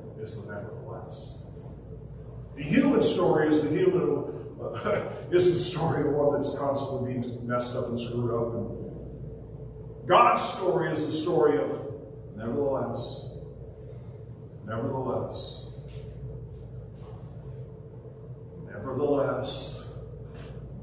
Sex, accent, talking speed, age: male, American, 85 wpm, 50-69